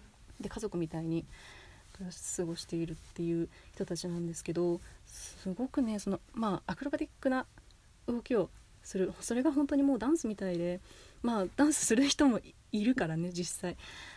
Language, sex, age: Japanese, female, 30-49